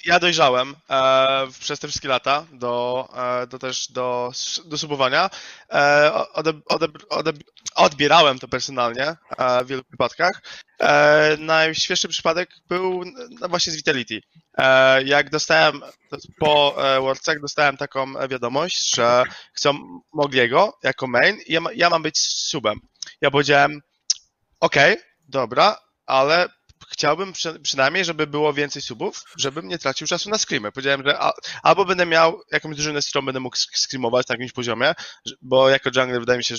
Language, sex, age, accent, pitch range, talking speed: Polish, male, 20-39, native, 125-150 Hz, 150 wpm